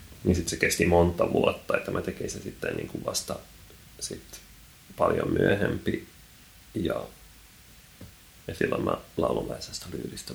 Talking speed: 135 wpm